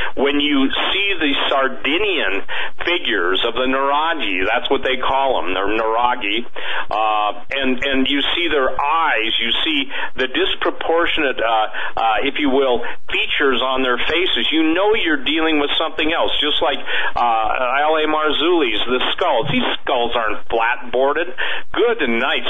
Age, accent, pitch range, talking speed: 50-69, American, 125-170 Hz, 150 wpm